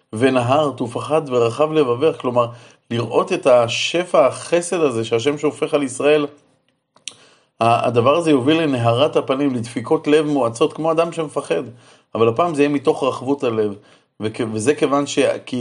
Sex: male